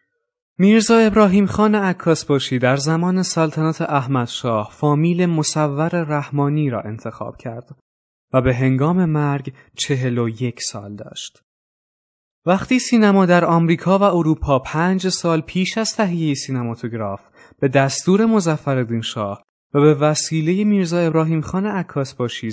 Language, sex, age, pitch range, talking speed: Persian, male, 20-39, 130-180 Hz, 125 wpm